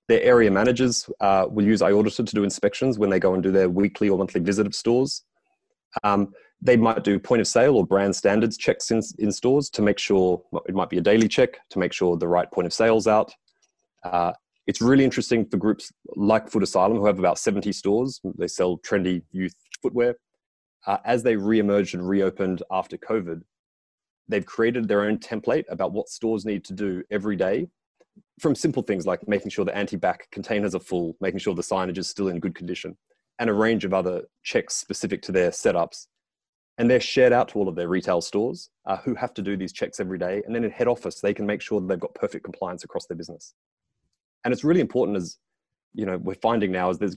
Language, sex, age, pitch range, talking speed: English, male, 30-49, 95-115 Hz, 220 wpm